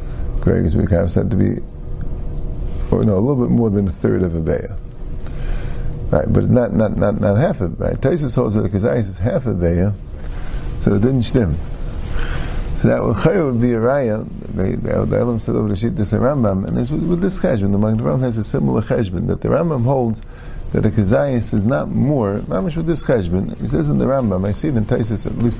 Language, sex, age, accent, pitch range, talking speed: English, male, 50-69, American, 95-120 Hz, 215 wpm